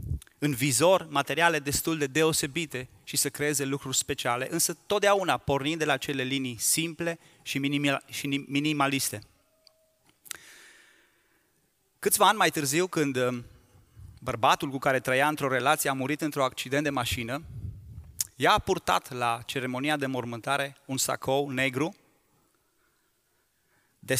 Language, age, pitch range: Romanian, 30-49, 120-150 Hz